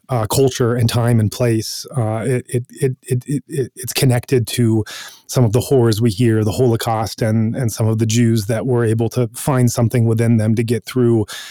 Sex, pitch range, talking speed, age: male, 115-130 Hz, 210 wpm, 30-49